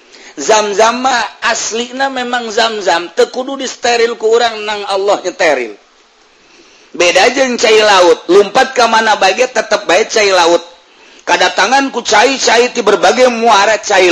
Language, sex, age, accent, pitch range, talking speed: Indonesian, male, 50-69, native, 195-260 Hz, 130 wpm